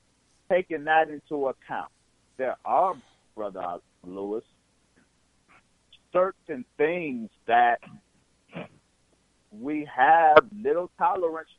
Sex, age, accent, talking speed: male, 50-69, American, 80 wpm